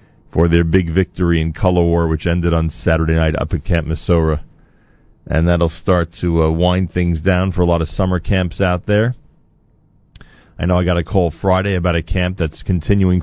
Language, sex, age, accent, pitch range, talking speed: English, male, 40-59, American, 85-100 Hz, 200 wpm